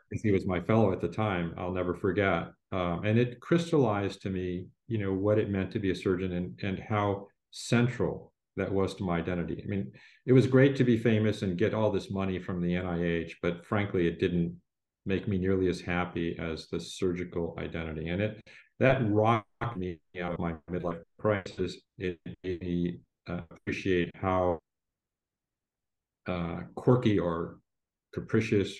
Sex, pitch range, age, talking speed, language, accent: male, 90-105 Hz, 40-59, 175 wpm, English, American